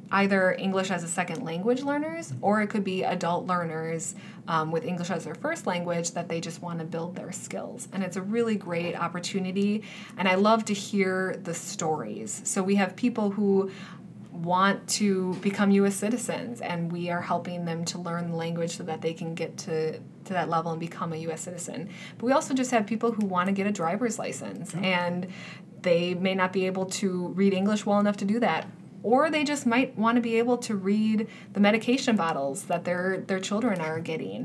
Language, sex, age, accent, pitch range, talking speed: English, female, 20-39, American, 175-205 Hz, 210 wpm